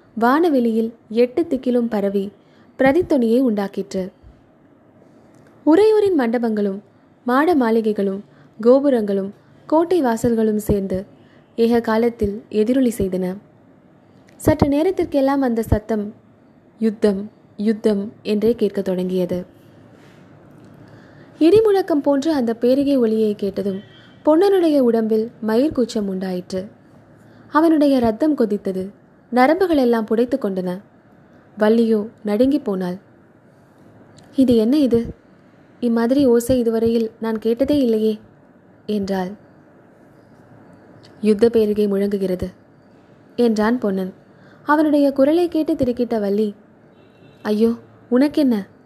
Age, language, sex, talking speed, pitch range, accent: 20-39, Tamil, female, 85 wpm, 205-255 Hz, native